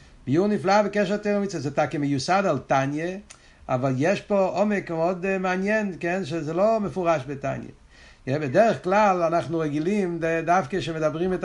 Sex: male